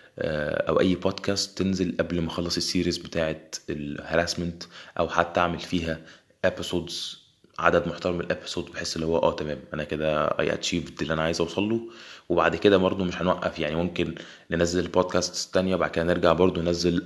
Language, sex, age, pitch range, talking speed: Arabic, male, 20-39, 80-90 Hz, 170 wpm